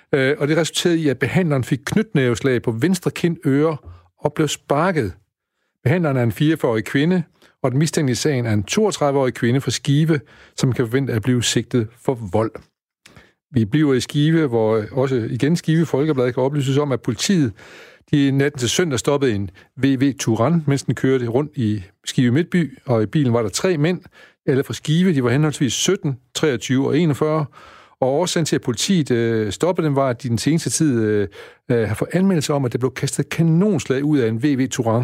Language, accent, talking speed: Danish, native, 190 wpm